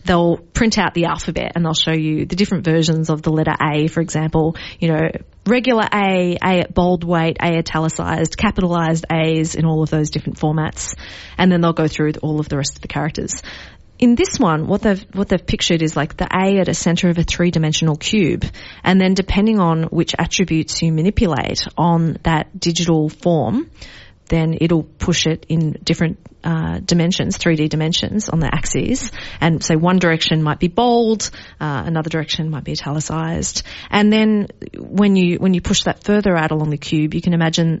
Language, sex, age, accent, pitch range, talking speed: English, female, 30-49, Australian, 160-190 Hz, 195 wpm